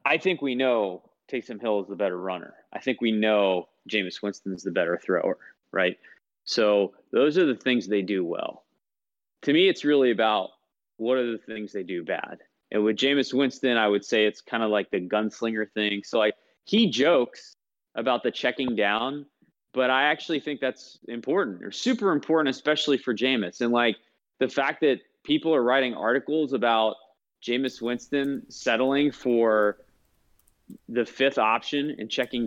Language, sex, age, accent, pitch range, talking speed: English, male, 20-39, American, 110-135 Hz, 170 wpm